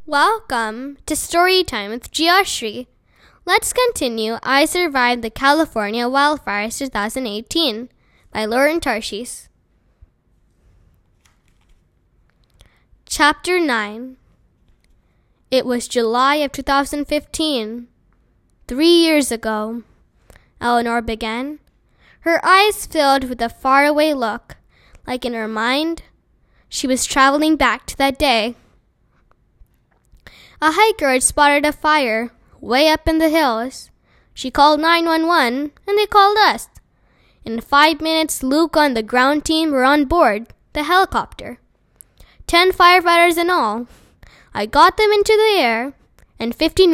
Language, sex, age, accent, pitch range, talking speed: English, female, 10-29, American, 240-320 Hz, 115 wpm